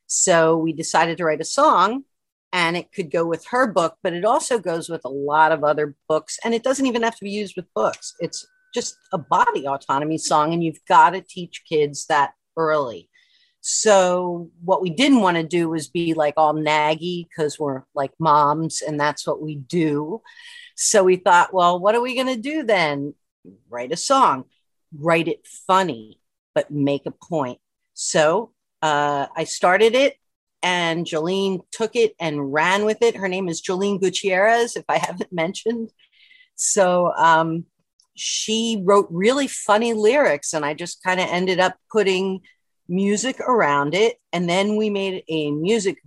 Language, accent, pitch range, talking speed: English, American, 155-210 Hz, 175 wpm